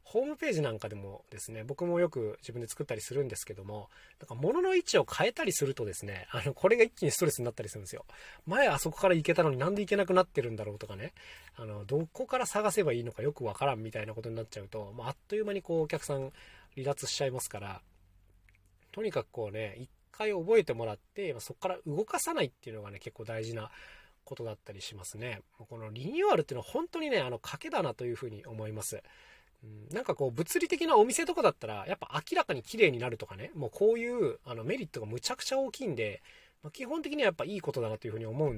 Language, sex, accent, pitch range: Japanese, male, native, 110-185 Hz